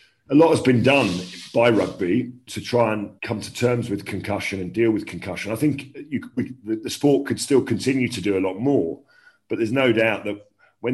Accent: British